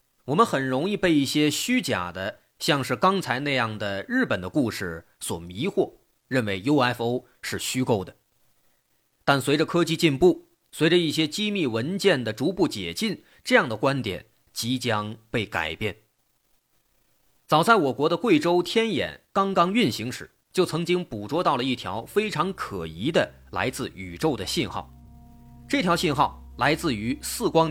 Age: 30-49